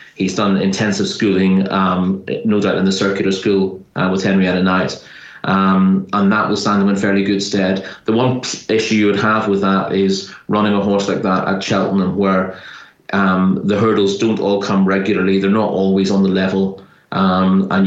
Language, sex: English, male